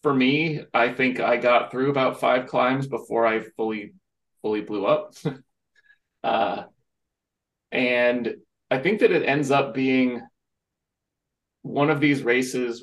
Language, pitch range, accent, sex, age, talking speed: English, 115-140 Hz, American, male, 30-49, 135 wpm